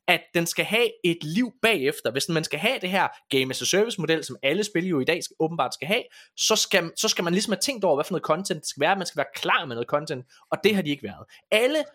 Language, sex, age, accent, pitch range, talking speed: Danish, male, 20-39, native, 155-225 Hz, 265 wpm